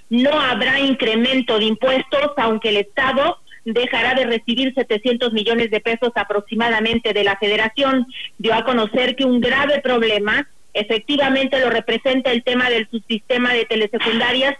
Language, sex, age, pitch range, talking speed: Spanish, female, 40-59, 225-265 Hz, 145 wpm